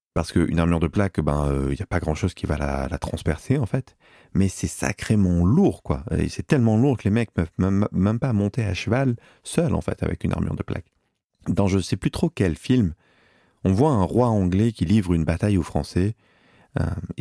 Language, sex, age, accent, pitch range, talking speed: French, male, 40-59, French, 90-125 Hz, 230 wpm